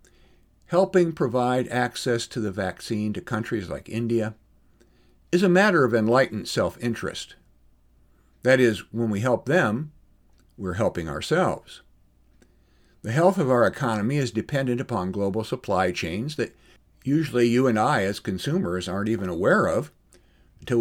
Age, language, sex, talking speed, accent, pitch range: 60-79, English, male, 140 wpm, American, 100-125 Hz